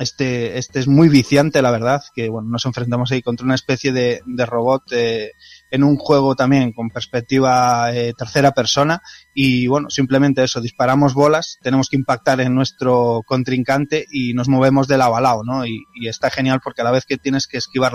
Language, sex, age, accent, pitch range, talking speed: Spanish, male, 20-39, Spanish, 125-145 Hz, 200 wpm